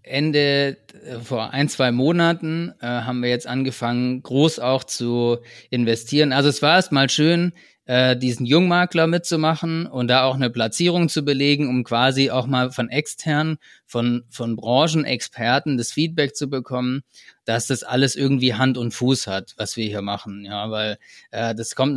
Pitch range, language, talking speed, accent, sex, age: 120-145 Hz, German, 165 wpm, German, male, 30-49